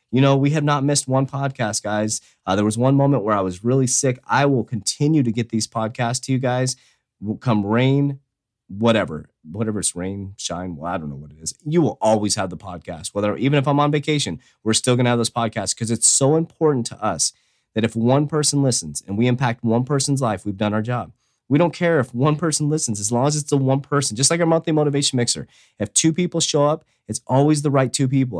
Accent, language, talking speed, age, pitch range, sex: American, English, 245 wpm, 30-49, 105-140 Hz, male